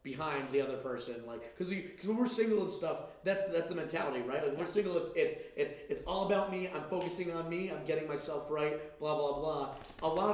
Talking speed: 240 wpm